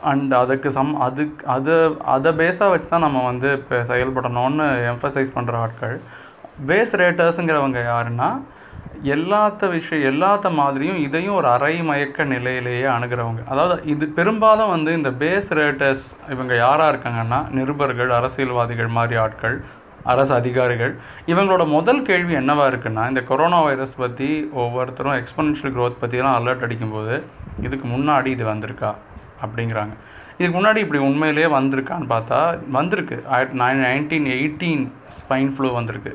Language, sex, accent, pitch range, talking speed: Tamil, male, native, 120-145 Hz, 130 wpm